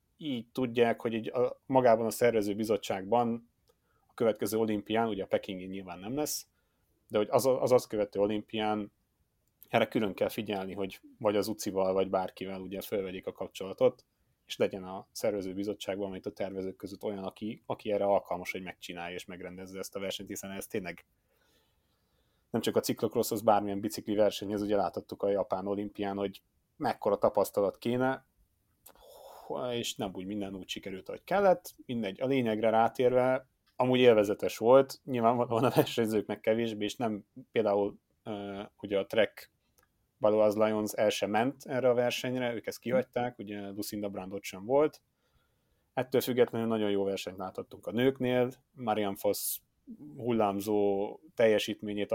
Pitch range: 100-120 Hz